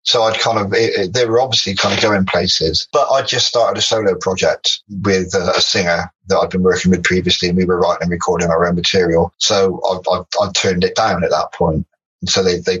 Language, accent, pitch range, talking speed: English, British, 90-115 Hz, 235 wpm